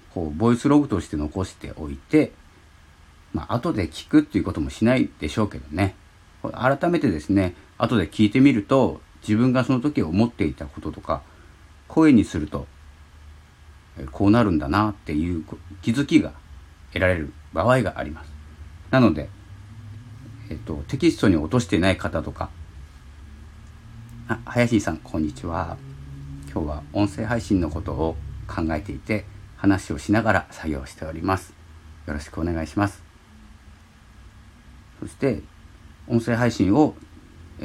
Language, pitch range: Japanese, 80-110 Hz